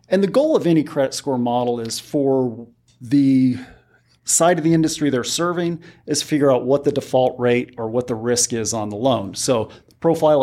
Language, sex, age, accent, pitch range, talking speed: English, male, 40-59, American, 120-145 Hz, 200 wpm